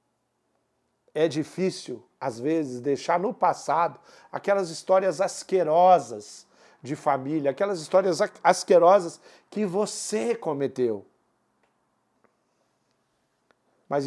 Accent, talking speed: Brazilian, 80 wpm